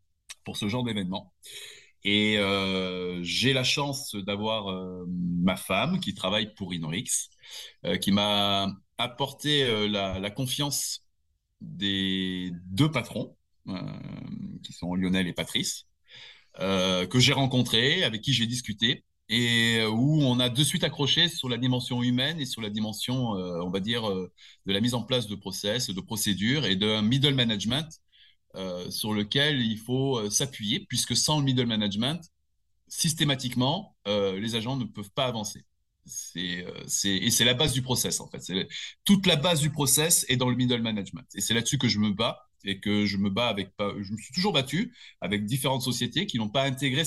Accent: French